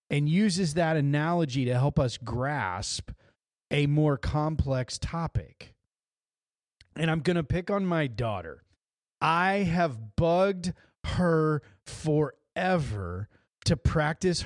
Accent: American